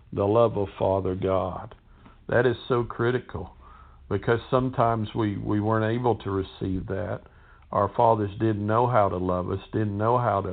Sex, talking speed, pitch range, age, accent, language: male, 170 wpm, 95-115 Hz, 50-69, American, English